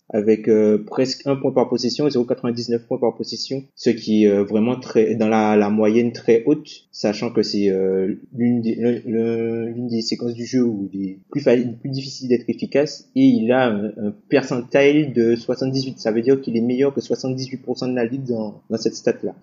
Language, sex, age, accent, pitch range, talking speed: French, male, 20-39, French, 115-140 Hz, 205 wpm